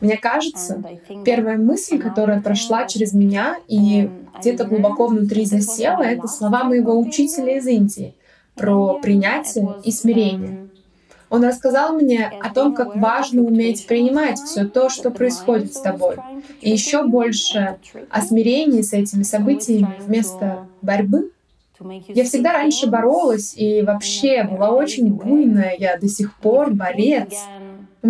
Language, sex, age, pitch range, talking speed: Russian, female, 20-39, 200-255 Hz, 135 wpm